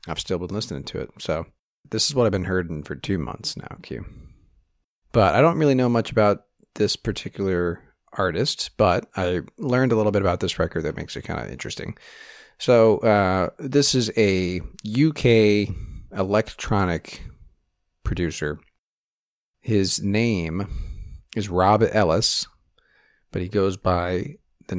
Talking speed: 150 wpm